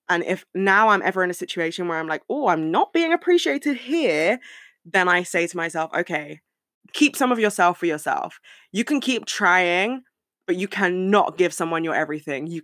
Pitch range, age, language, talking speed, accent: 165-220 Hz, 20-39, English, 195 wpm, British